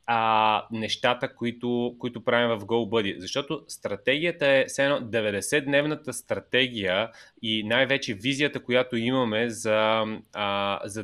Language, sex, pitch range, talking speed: Bulgarian, male, 115-140 Hz, 105 wpm